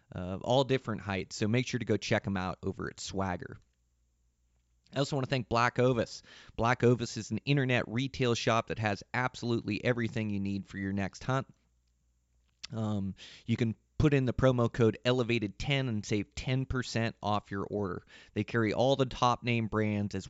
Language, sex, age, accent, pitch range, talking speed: English, male, 30-49, American, 100-120 Hz, 185 wpm